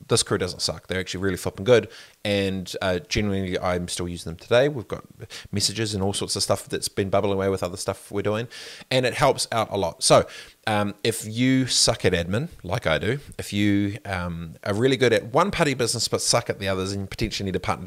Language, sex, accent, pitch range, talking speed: English, male, Australian, 95-115 Hz, 240 wpm